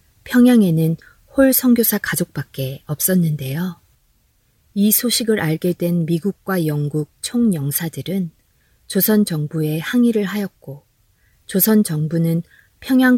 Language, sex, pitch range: Korean, female, 150-200 Hz